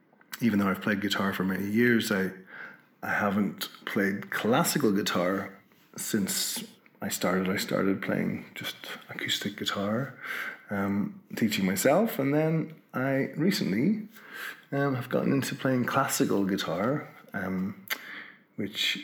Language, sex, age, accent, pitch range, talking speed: English, male, 30-49, Irish, 105-140 Hz, 125 wpm